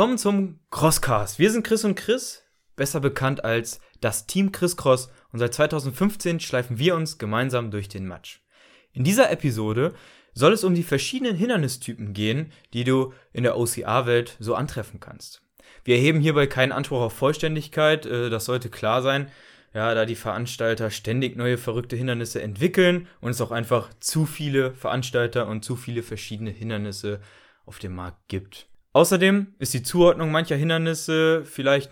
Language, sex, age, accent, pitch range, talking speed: German, male, 20-39, German, 110-145 Hz, 165 wpm